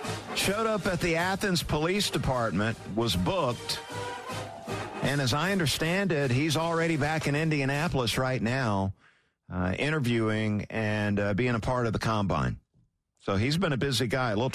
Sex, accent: male, American